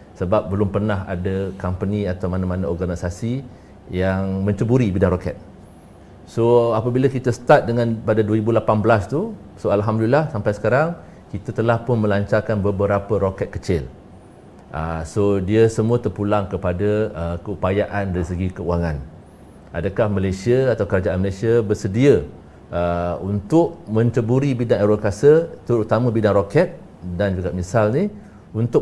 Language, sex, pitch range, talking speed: Malay, male, 95-115 Hz, 120 wpm